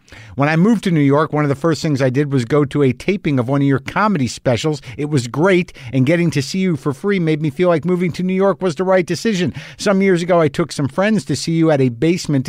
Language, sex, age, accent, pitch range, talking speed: English, male, 50-69, American, 135-180 Hz, 285 wpm